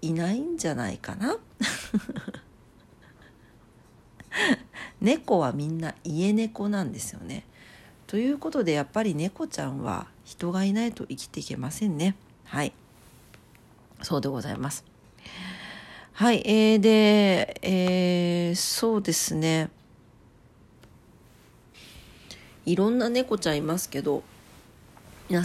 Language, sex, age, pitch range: Japanese, female, 50-69, 150-215 Hz